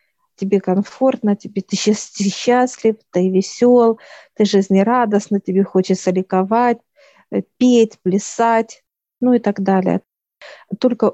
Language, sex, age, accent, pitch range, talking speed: Russian, female, 50-69, native, 190-220 Hz, 100 wpm